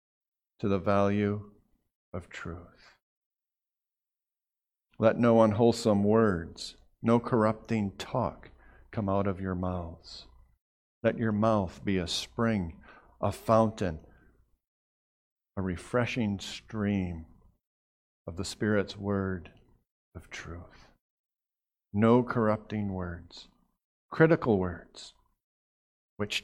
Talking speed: 90 wpm